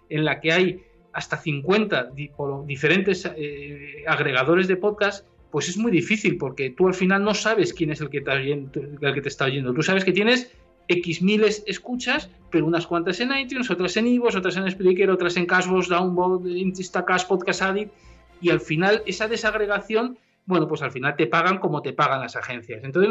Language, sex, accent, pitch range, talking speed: Spanish, male, Spanish, 160-205 Hz, 200 wpm